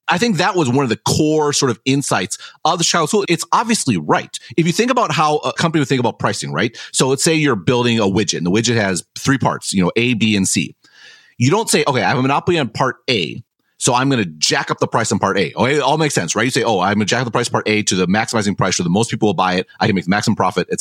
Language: English